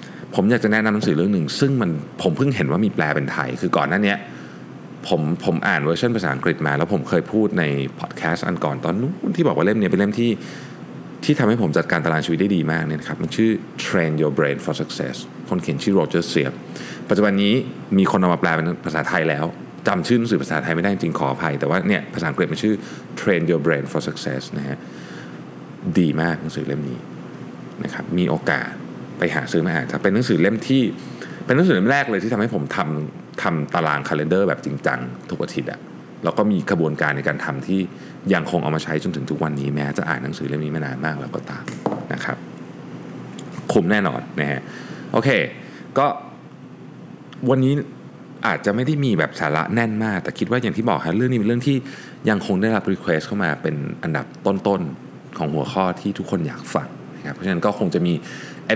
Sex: male